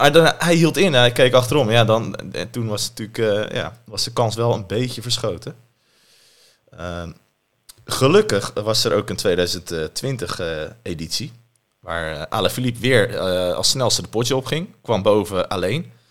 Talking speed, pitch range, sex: 170 wpm, 100-125 Hz, male